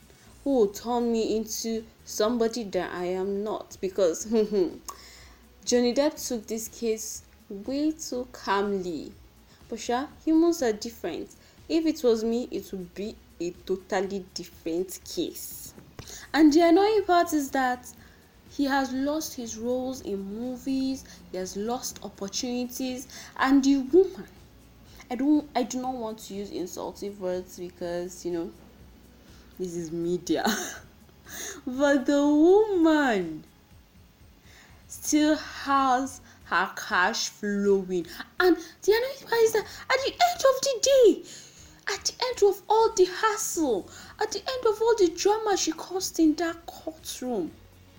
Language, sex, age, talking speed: English, female, 10-29, 130 wpm